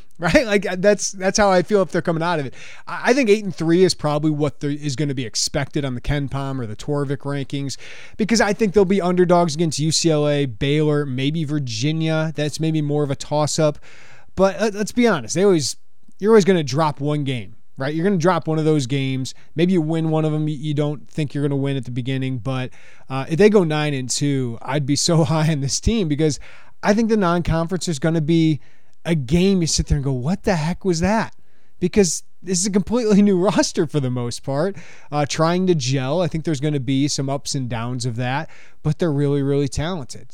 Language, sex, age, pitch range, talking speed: English, male, 20-39, 140-175 Hz, 235 wpm